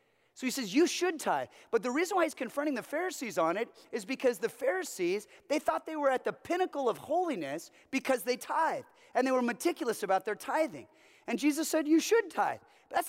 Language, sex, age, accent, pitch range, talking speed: English, male, 30-49, American, 190-310 Hz, 215 wpm